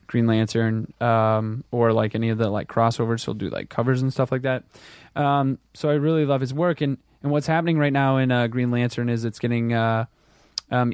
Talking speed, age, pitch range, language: 220 wpm, 20-39, 115-145 Hz, English